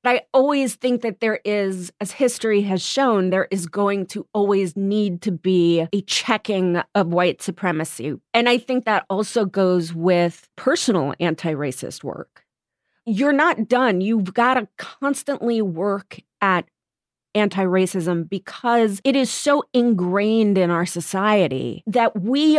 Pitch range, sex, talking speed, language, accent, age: 185-245 Hz, female, 145 wpm, English, American, 30-49